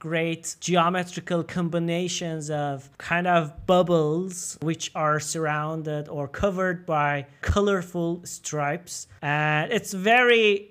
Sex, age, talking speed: male, 30-49, 100 wpm